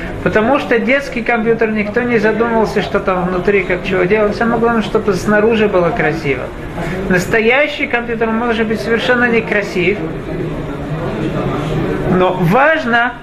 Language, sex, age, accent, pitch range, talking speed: Russian, male, 50-69, native, 190-230 Hz, 120 wpm